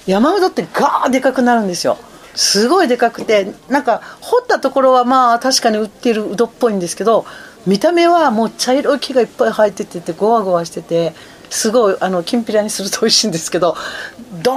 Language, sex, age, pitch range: Japanese, female, 40-59, 195-260 Hz